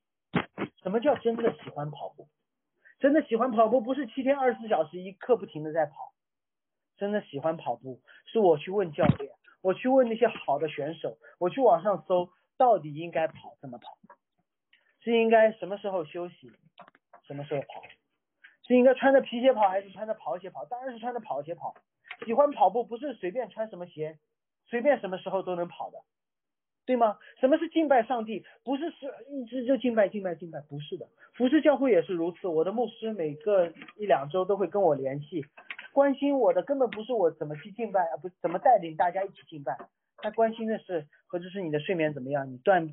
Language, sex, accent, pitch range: Chinese, male, native, 165-250 Hz